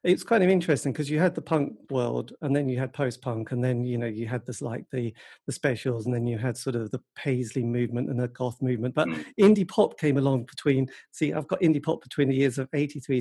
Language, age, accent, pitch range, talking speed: English, 40-59, British, 125-150 Hz, 250 wpm